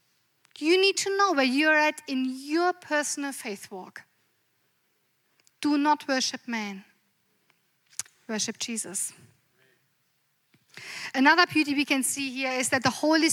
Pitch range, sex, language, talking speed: 225-315 Hz, female, English, 125 wpm